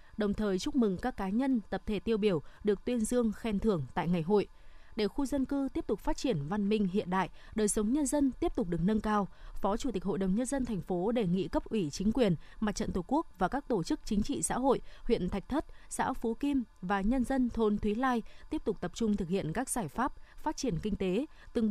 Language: Vietnamese